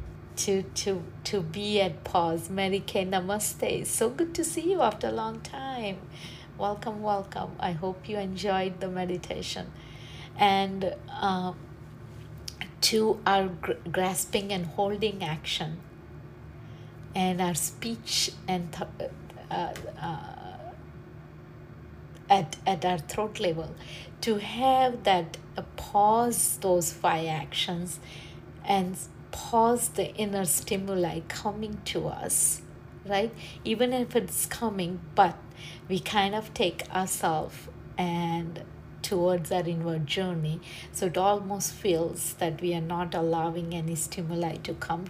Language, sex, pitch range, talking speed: English, female, 165-205 Hz, 120 wpm